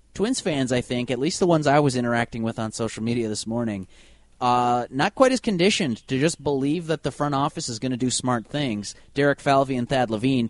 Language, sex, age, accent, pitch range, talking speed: English, male, 30-49, American, 110-140 Hz, 230 wpm